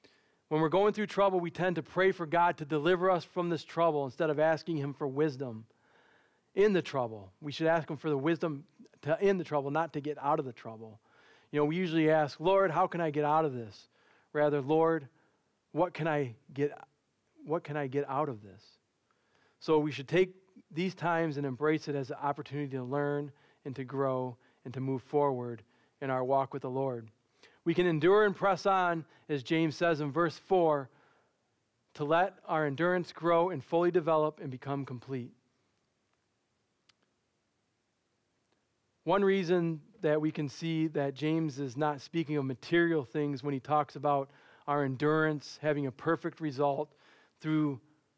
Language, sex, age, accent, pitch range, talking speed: English, male, 40-59, American, 140-170 Hz, 180 wpm